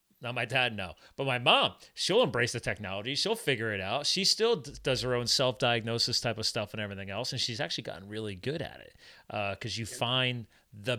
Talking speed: 225 wpm